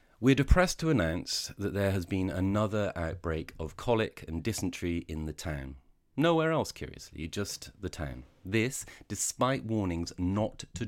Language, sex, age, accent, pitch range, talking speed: English, male, 30-49, British, 75-105 Hz, 155 wpm